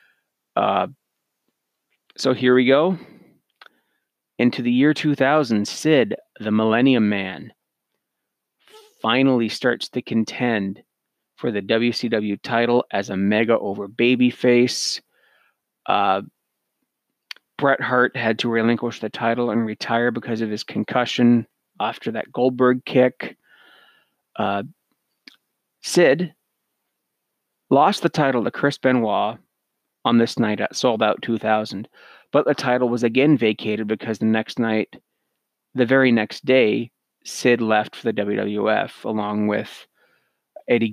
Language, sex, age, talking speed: English, male, 30-49, 115 wpm